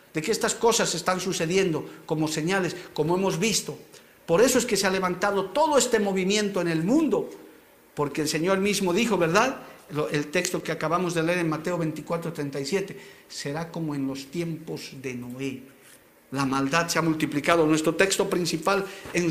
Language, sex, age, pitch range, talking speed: Spanish, male, 50-69, 150-190 Hz, 175 wpm